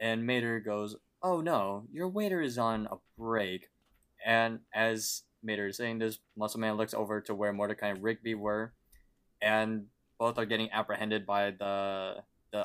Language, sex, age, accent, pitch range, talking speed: English, male, 20-39, American, 105-120 Hz, 165 wpm